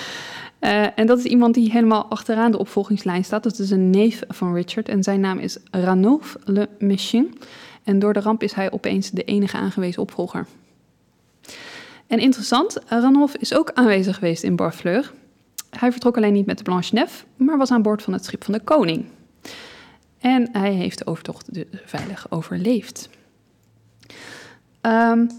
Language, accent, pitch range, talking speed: Dutch, Dutch, 195-245 Hz, 170 wpm